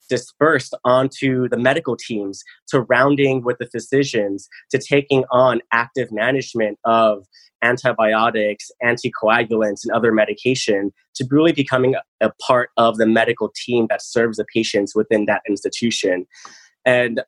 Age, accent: 20-39, American